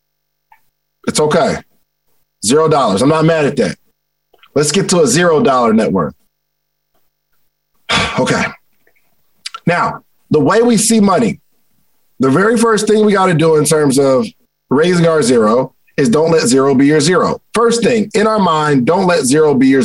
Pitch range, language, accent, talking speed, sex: 150-220 Hz, English, American, 165 wpm, male